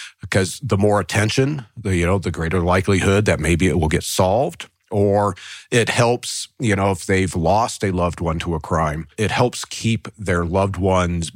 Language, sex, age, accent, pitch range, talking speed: English, male, 50-69, American, 85-105 Hz, 185 wpm